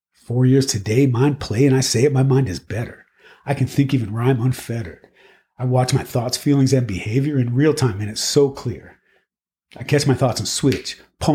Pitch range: 105-135 Hz